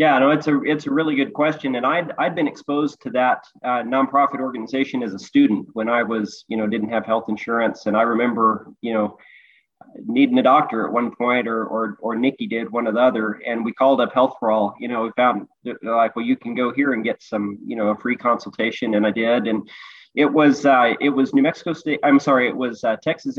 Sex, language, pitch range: male, English, 115-140 Hz